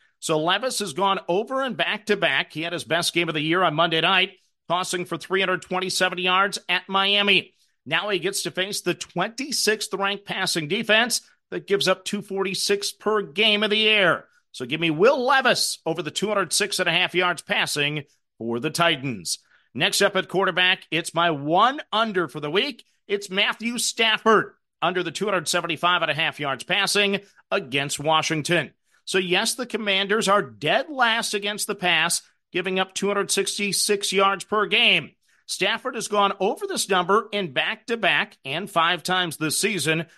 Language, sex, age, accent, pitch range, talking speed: English, male, 40-59, American, 170-210 Hz, 175 wpm